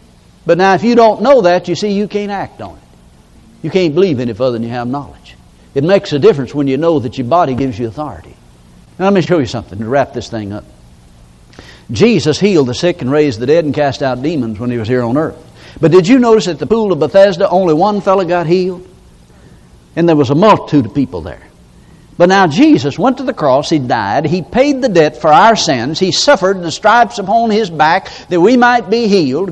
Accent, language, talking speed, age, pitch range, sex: American, English, 235 wpm, 60-79, 125-200 Hz, male